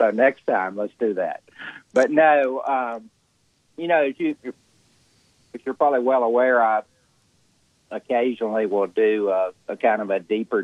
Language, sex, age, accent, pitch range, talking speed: English, male, 50-69, American, 95-115 Hz, 160 wpm